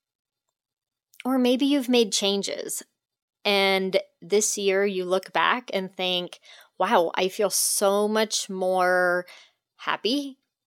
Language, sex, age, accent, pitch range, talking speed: English, female, 30-49, American, 185-245 Hz, 110 wpm